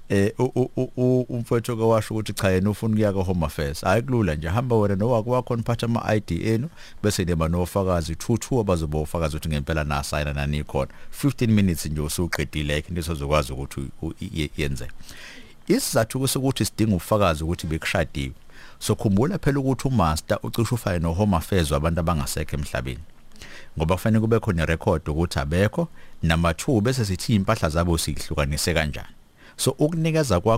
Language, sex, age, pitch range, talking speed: English, male, 60-79, 80-110 Hz, 165 wpm